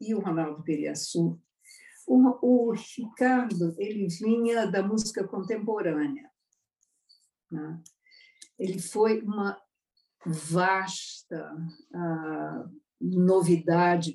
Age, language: 50-69, Portuguese